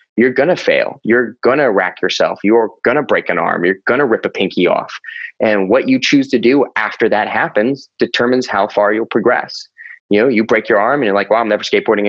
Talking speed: 245 wpm